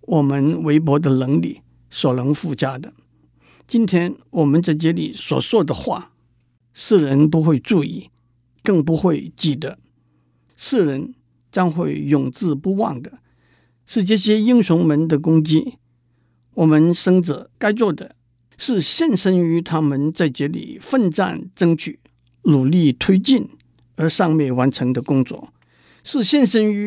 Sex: male